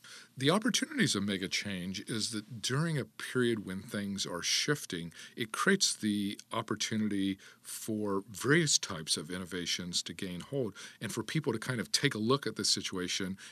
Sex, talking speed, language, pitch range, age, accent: male, 170 wpm, English, 95-115 Hz, 50-69, American